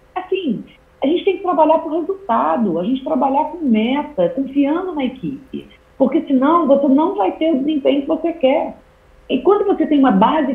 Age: 50-69